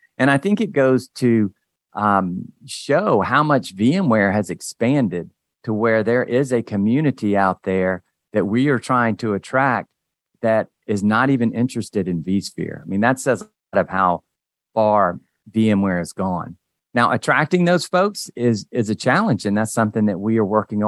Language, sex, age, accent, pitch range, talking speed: English, male, 50-69, American, 100-120 Hz, 175 wpm